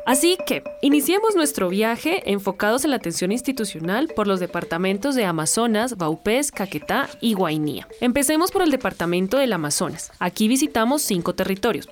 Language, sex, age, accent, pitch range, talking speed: Spanish, female, 20-39, Colombian, 180-245 Hz, 145 wpm